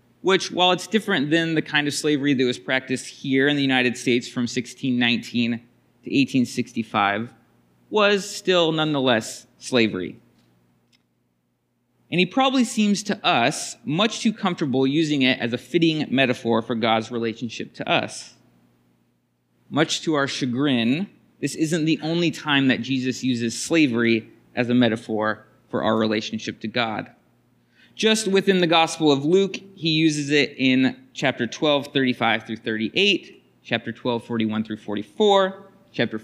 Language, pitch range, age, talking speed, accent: English, 115-165 Hz, 30-49, 145 wpm, American